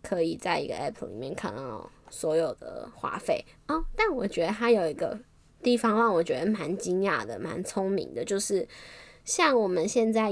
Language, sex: Chinese, female